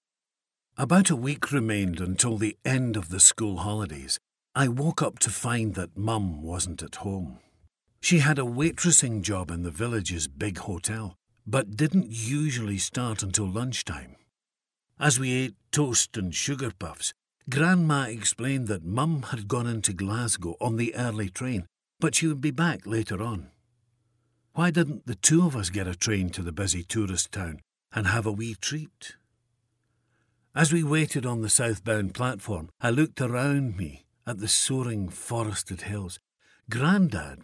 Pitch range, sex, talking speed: 100-140 Hz, male, 160 wpm